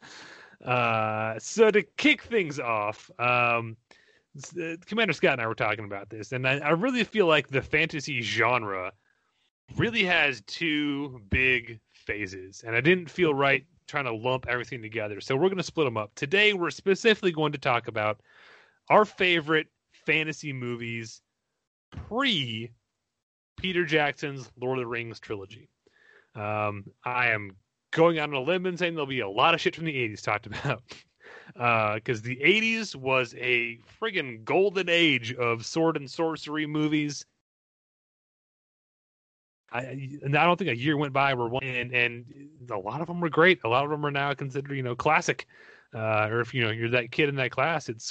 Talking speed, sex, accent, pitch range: 175 wpm, male, American, 115-155 Hz